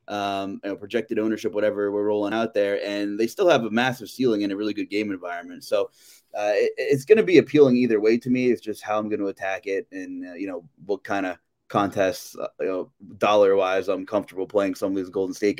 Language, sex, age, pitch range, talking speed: English, male, 20-39, 105-145 Hz, 245 wpm